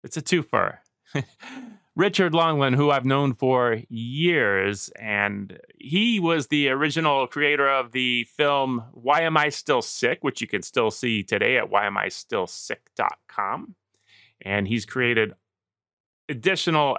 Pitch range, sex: 115-165 Hz, male